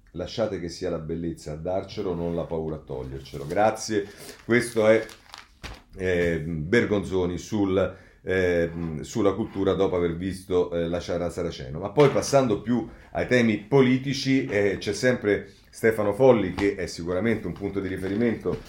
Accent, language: native, Italian